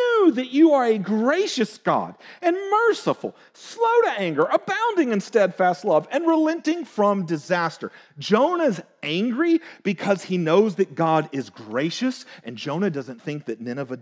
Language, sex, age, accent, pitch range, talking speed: English, male, 40-59, American, 155-245 Hz, 145 wpm